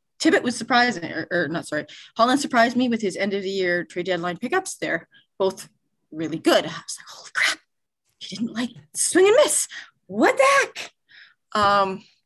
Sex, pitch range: female, 175-215 Hz